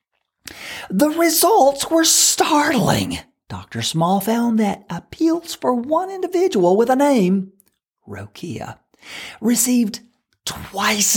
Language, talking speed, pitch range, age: English, 95 wpm, 160-250 Hz, 40-59